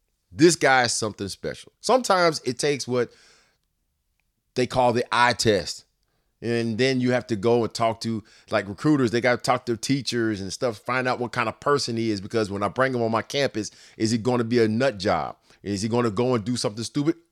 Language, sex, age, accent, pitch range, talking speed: English, male, 30-49, American, 115-150 Hz, 230 wpm